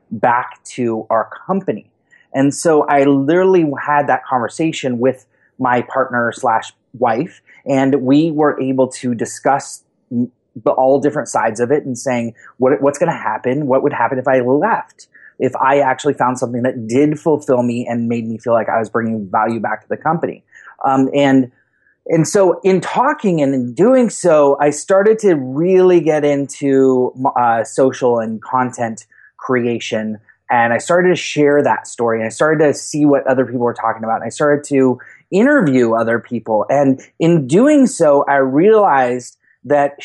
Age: 30-49